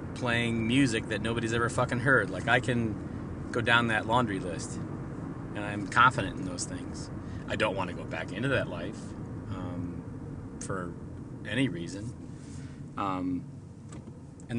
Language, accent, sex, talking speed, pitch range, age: English, American, male, 150 wpm, 105-130 Hz, 30-49